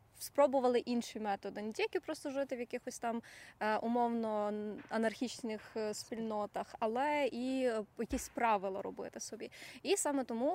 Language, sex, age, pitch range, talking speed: Ukrainian, female, 20-39, 220-265 Hz, 125 wpm